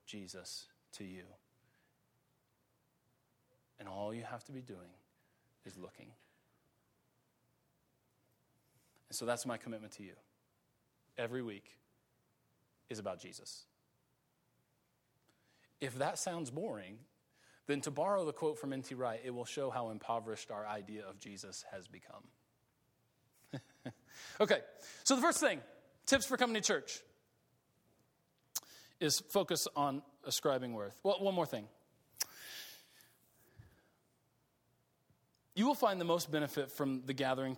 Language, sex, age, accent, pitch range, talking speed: English, male, 30-49, American, 115-150 Hz, 120 wpm